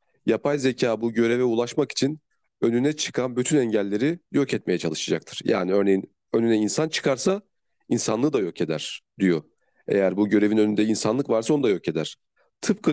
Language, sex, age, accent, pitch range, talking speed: Turkish, male, 40-59, native, 115-140 Hz, 160 wpm